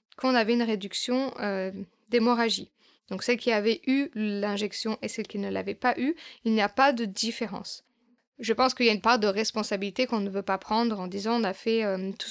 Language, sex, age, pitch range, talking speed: French, female, 20-39, 205-235 Hz, 225 wpm